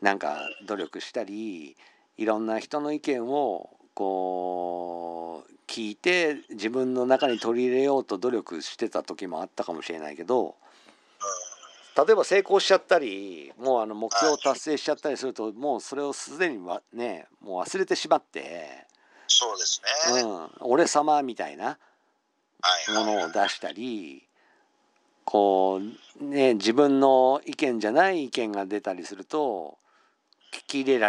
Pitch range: 100-150 Hz